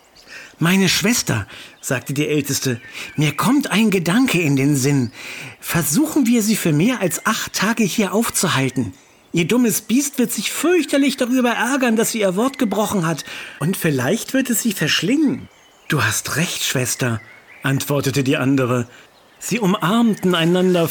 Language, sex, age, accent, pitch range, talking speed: German, male, 50-69, German, 140-210 Hz, 150 wpm